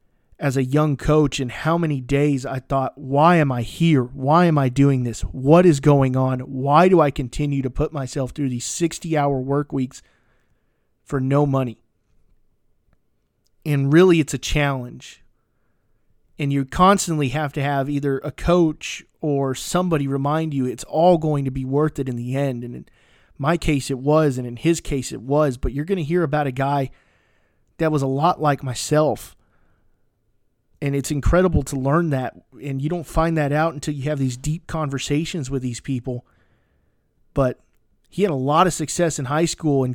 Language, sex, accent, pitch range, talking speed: English, male, American, 125-155 Hz, 190 wpm